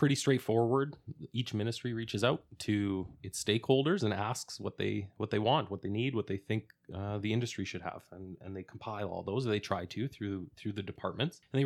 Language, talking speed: English, 215 wpm